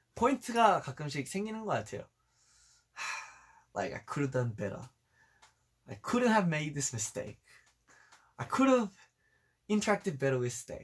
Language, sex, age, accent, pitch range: Korean, male, 20-39, native, 125-185 Hz